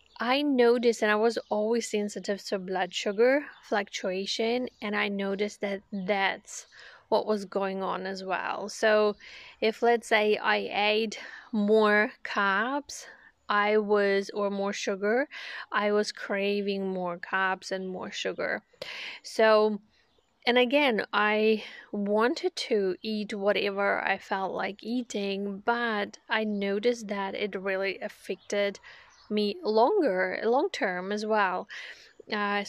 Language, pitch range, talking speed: English, 200-230 Hz, 125 wpm